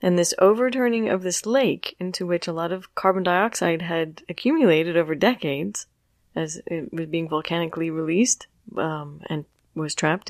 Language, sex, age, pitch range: English, female, 30-49, 155-200 Hz